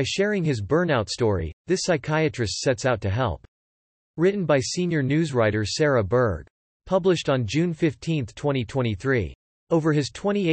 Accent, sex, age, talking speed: American, male, 40-59, 125 wpm